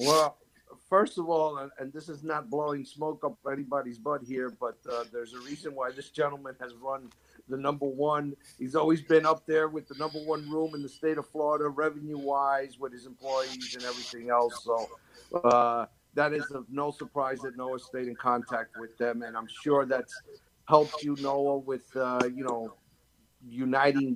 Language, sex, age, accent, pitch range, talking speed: English, male, 50-69, American, 120-145 Hz, 185 wpm